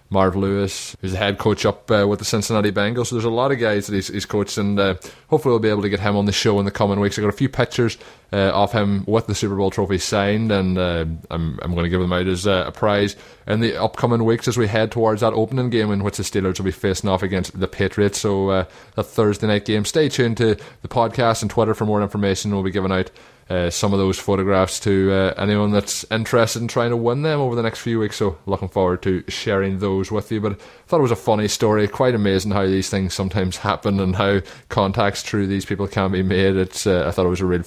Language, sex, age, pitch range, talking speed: English, male, 20-39, 95-115 Hz, 265 wpm